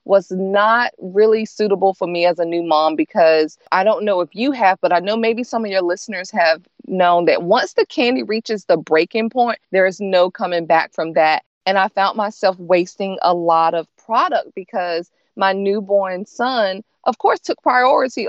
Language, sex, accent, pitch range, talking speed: English, female, American, 175-225 Hz, 195 wpm